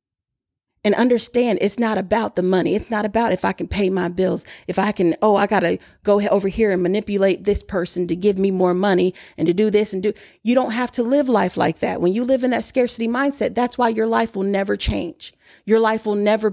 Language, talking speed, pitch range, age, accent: English, 245 wpm, 195-240 Hz, 40-59, American